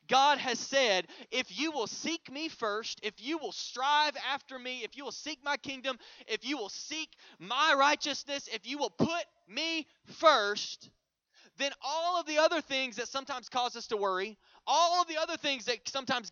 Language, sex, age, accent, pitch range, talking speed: English, male, 20-39, American, 215-300 Hz, 190 wpm